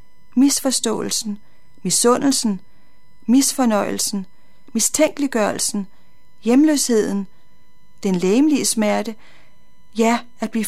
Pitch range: 210-250 Hz